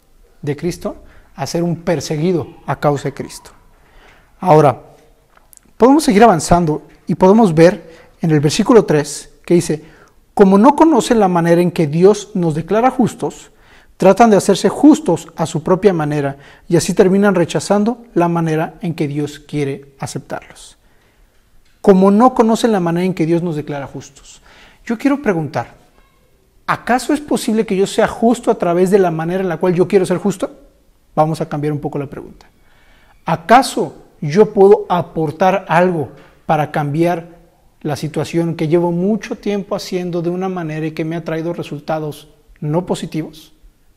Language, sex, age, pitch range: Spanish, male, 40-59, 155-205 Hz